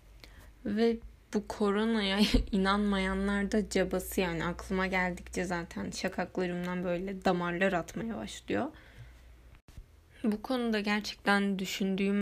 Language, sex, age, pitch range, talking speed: Turkish, female, 10-29, 180-215 Hz, 95 wpm